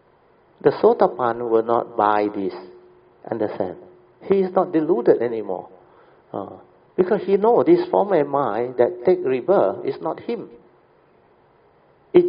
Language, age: English, 60-79